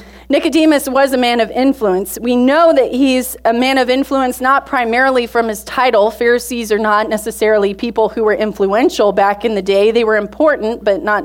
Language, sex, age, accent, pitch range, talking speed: English, female, 30-49, American, 220-275 Hz, 190 wpm